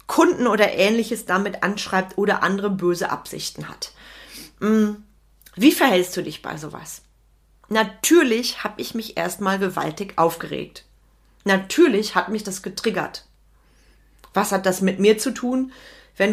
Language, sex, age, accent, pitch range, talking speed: German, female, 30-49, German, 190-235 Hz, 130 wpm